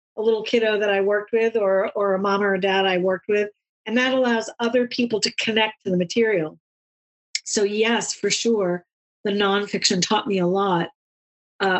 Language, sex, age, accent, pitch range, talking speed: English, female, 40-59, American, 180-220 Hz, 195 wpm